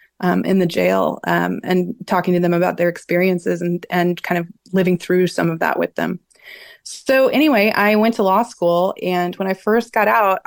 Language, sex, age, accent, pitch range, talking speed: English, female, 20-39, American, 185-245 Hz, 205 wpm